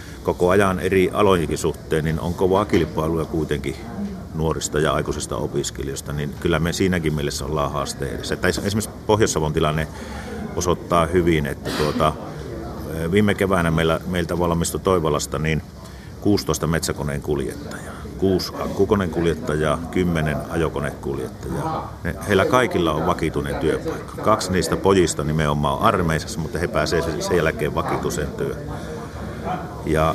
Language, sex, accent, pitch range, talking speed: Finnish, male, native, 75-90 Hz, 120 wpm